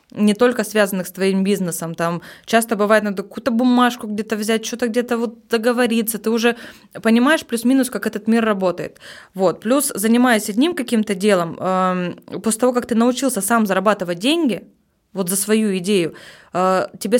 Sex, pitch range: female, 185-230 Hz